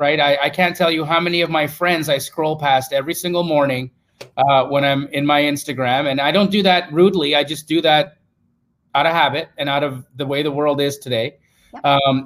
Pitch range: 135-170 Hz